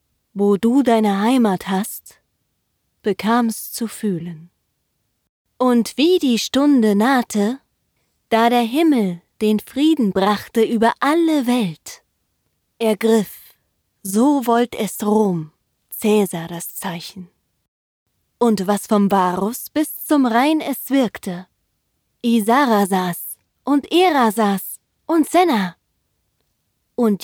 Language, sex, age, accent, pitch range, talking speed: German, female, 20-39, German, 190-235 Hz, 105 wpm